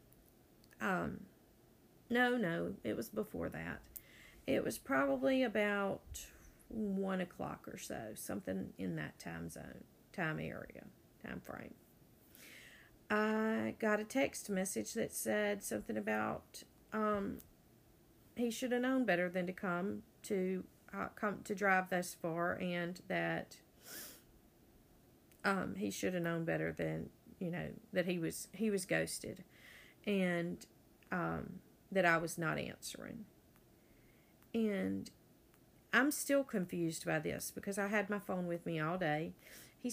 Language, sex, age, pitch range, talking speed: English, female, 50-69, 170-220 Hz, 135 wpm